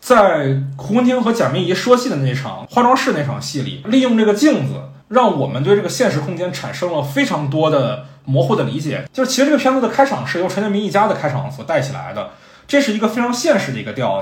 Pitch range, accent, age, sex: 135-230 Hz, native, 20-39, male